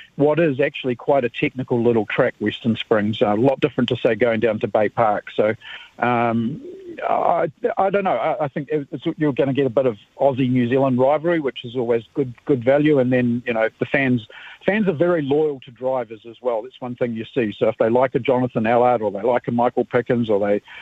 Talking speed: 235 wpm